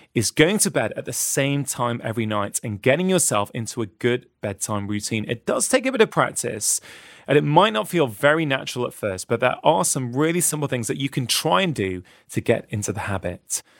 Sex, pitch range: male, 115-165 Hz